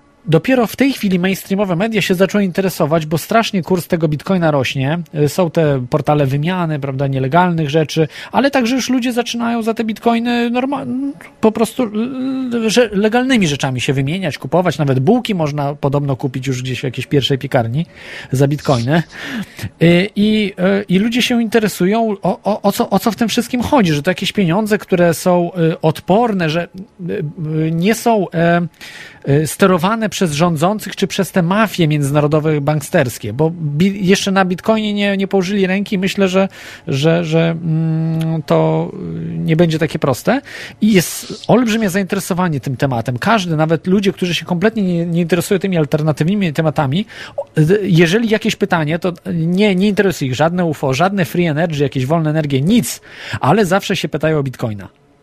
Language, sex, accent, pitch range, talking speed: Polish, male, native, 155-205 Hz, 160 wpm